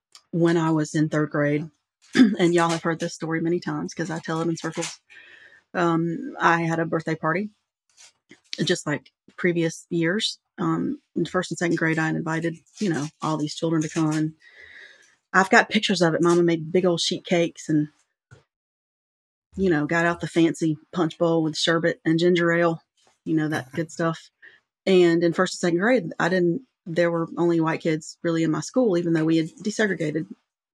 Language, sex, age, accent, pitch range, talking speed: English, female, 30-49, American, 160-175 Hz, 195 wpm